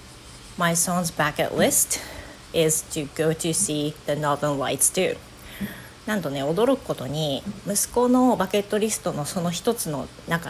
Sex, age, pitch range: female, 40-59, 155-200 Hz